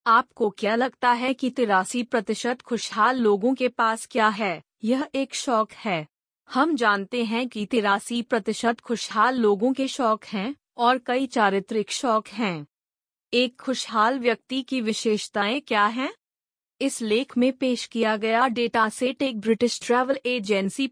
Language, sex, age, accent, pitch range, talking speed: Hindi, female, 30-49, native, 210-255 Hz, 150 wpm